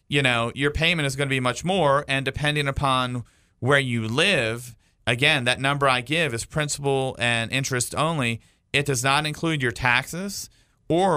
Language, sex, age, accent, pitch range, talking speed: English, male, 40-59, American, 115-140 Hz, 175 wpm